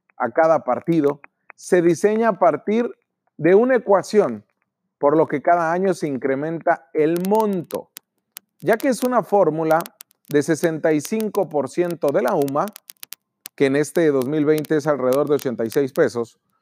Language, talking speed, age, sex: Spanish, 135 wpm, 40-59, male